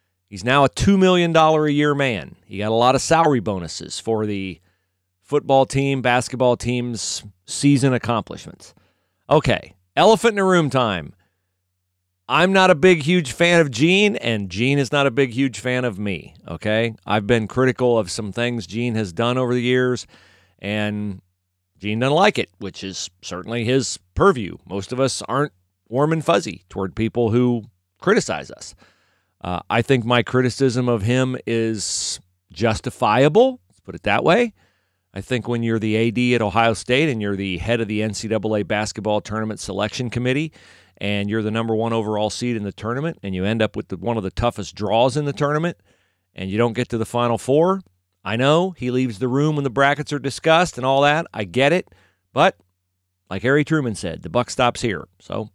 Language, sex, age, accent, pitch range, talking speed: English, male, 40-59, American, 100-135 Hz, 190 wpm